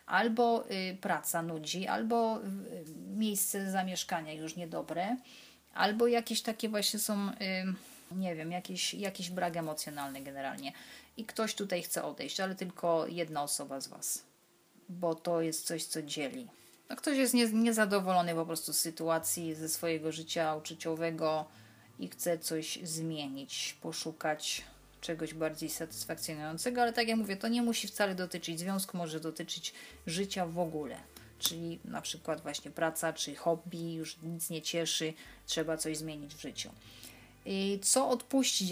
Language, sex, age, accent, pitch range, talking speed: Polish, female, 30-49, native, 160-205 Hz, 145 wpm